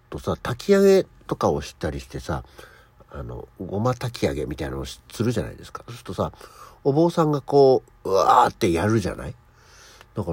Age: 50-69